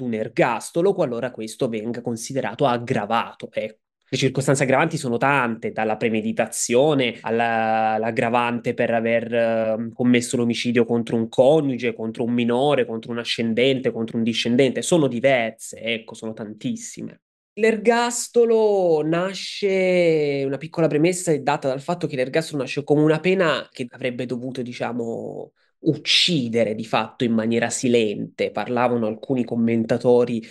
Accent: native